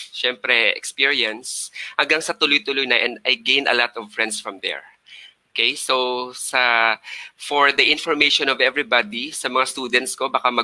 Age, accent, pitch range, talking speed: 20-39, native, 110-145 Hz, 160 wpm